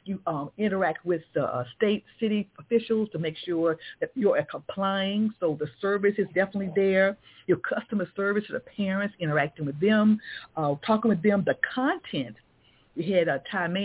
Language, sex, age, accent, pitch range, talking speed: English, female, 50-69, American, 165-215 Hz, 175 wpm